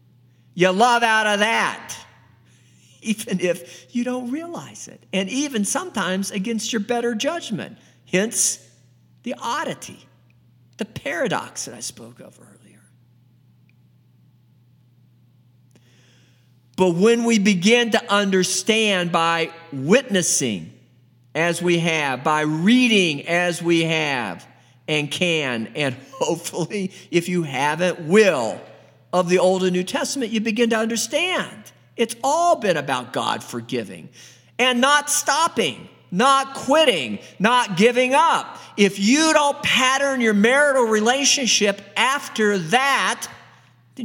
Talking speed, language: 115 wpm, English